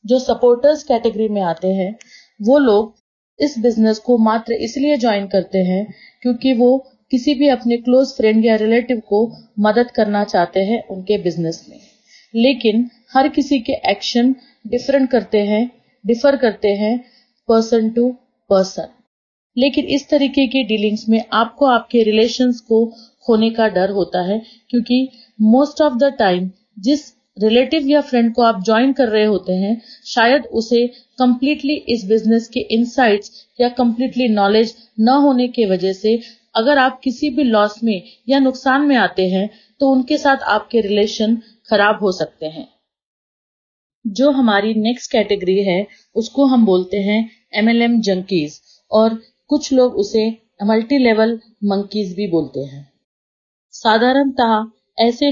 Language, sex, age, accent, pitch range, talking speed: Hindi, female, 30-49, native, 210-255 Hz, 120 wpm